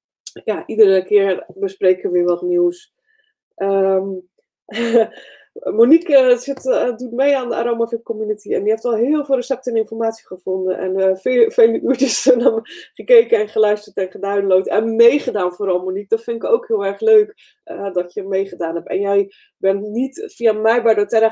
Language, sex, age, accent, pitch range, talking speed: Dutch, female, 20-39, Dutch, 185-270 Hz, 175 wpm